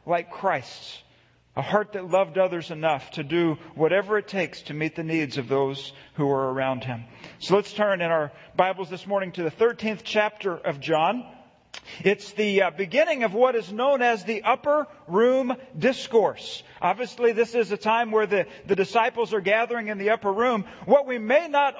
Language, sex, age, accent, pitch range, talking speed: English, male, 40-59, American, 165-225 Hz, 185 wpm